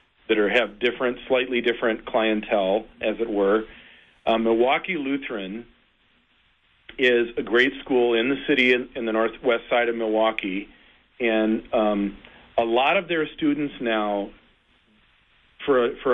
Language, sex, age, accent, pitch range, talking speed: English, male, 40-59, American, 110-130 Hz, 130 wpm